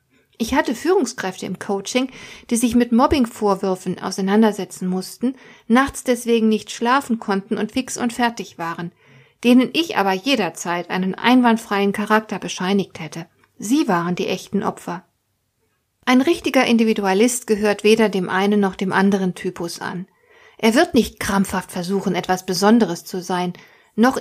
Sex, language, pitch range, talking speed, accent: female, German, 185-240 Hz, 140 wpm, German